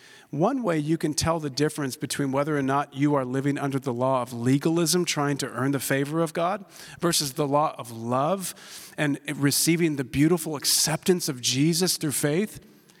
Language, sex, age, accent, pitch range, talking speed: English, male, 40-59, American, 135-175 Hz, 185 wpm